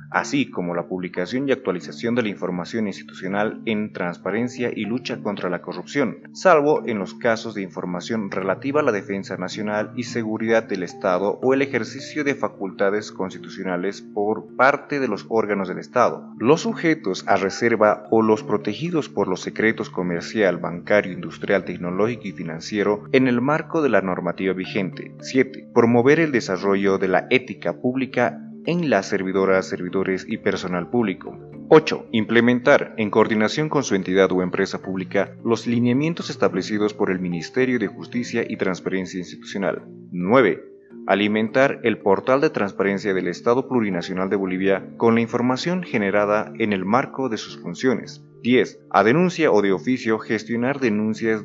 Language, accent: Spanish, Mexican